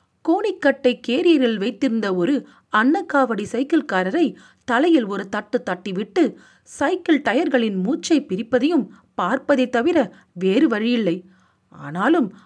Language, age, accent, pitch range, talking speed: Tamil, 40-59, native, 195-285 Hz, 90 wpm